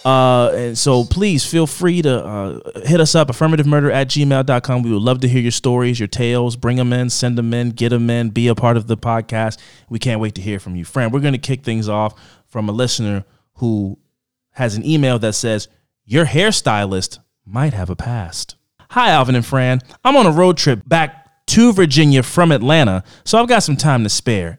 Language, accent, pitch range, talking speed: English, American, 110-145 Hz, 215 wpm